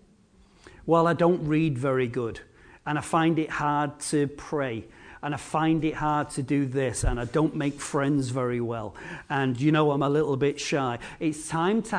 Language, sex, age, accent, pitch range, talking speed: English, male, 40-59, British, 150-190 Hz, 195 wpm